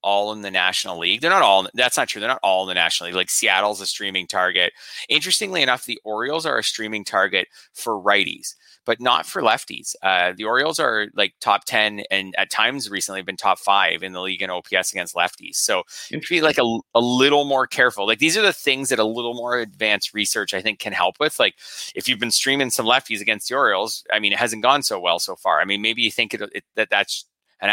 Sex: male